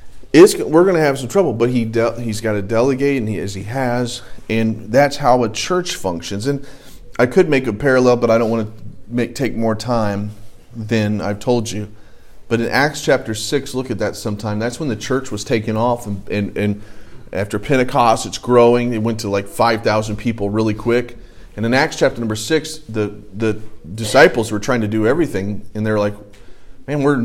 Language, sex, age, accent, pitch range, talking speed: English, male, 40-59, American, 105-135 Hz, 210 wpm